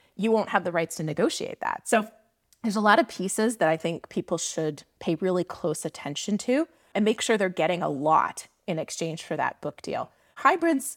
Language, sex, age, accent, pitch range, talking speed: English, female, 30-49, American, 165-225 Hz, 210 wpm